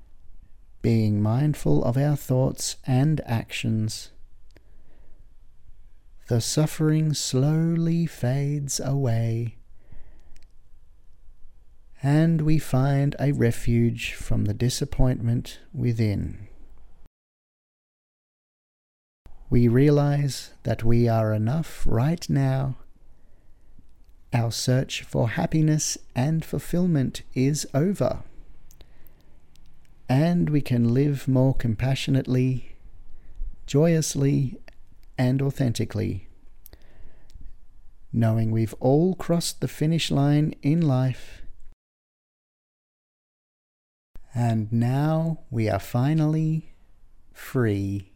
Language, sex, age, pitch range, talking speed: English, male, 40-59, 100-140 Hz, 75 wpm